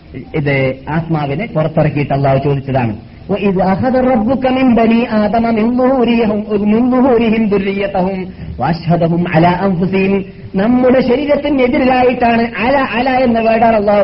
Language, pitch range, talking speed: Malayalam, 170-230 Hz, 45 wpm